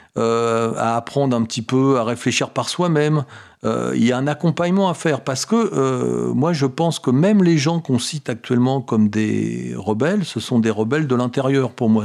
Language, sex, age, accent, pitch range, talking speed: French, male, 40-59, French, 110-150 Hz, 210 wpm